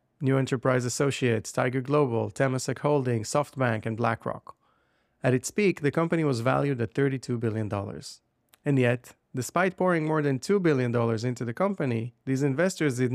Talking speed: 155 wpm